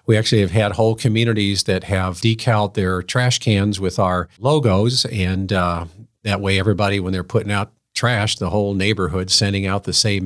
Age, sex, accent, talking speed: 50-69, male, American, 185 wpm